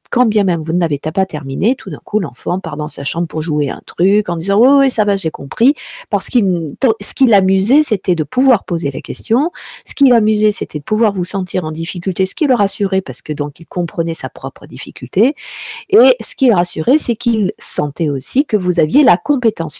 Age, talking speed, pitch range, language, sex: 50-69, 225 wpm, 165-235 Hz, French, female